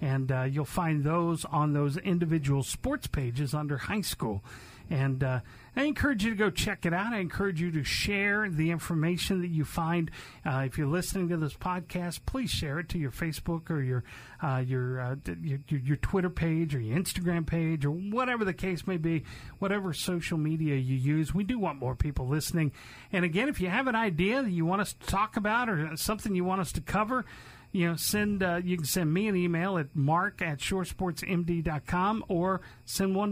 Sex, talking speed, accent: male, 205 wpm, American